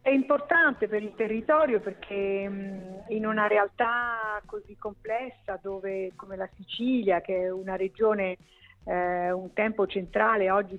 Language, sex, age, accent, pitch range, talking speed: Italian, female, 50-69, native, 175-205 Hz, 135 wpm